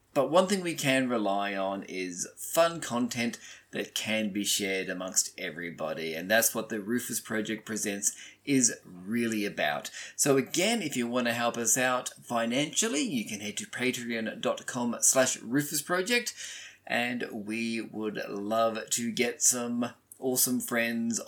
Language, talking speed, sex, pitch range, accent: English, 145 wpm, male, 105-125 Hz, Australian